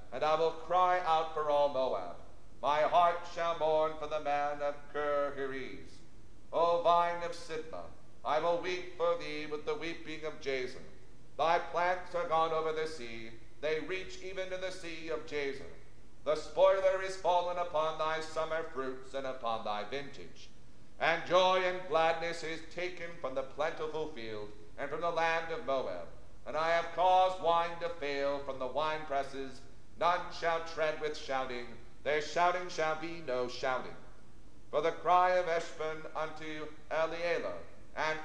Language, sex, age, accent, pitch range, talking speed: English, male, 50-69, American, 140-170 Hz, 160 wpm